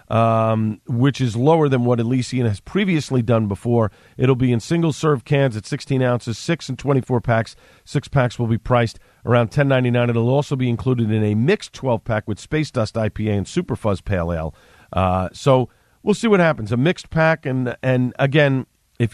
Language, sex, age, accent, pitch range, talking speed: English, male, 40-59, American, 110-140 Hz, 190 wpm